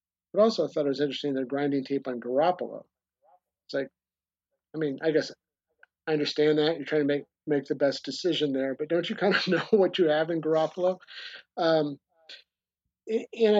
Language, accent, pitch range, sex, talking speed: English, American, 130-155 Hz, male, 190 wpm